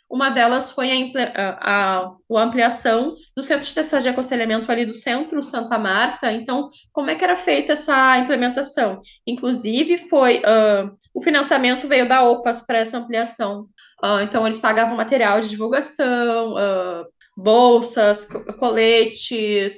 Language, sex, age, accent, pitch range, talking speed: Portuguese, female, 10-29, Brazilian, 235-300 Hz, 145 wpm